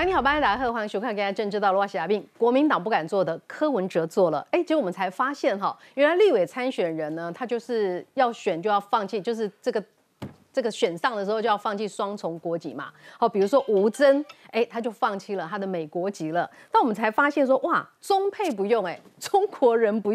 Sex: female